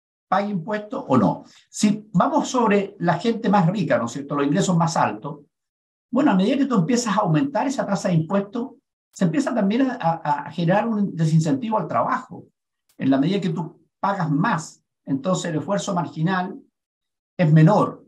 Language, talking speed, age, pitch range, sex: Spanish, 175 wpm, 50-69, 145-205 Hz, male